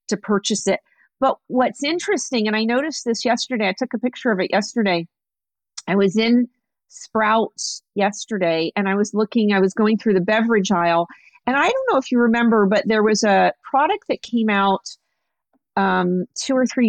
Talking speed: 185 wpm